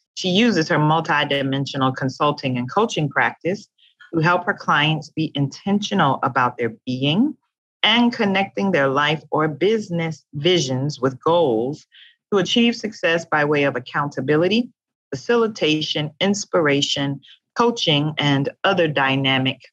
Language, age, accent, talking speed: English, 40-59, American, 120 wpm